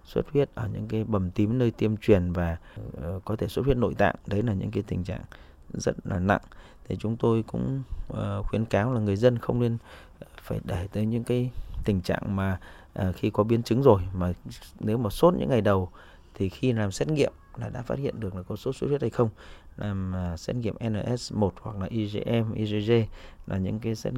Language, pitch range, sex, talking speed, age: Vietnamese, 90-115 Hz, male, 215 wpm, 20-39